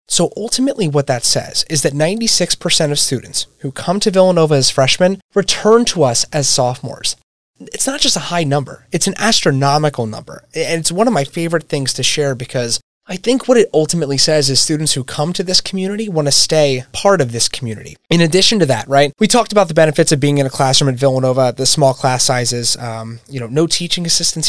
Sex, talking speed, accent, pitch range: male, 215 wpm, American, 135-165 Hz